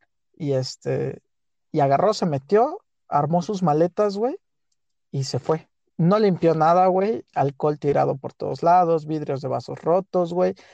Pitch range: 145-185 Hz